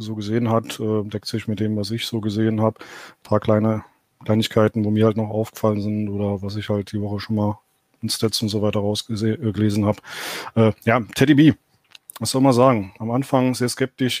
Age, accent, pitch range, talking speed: 20-39, German, 110-130 Hz, 205 wpm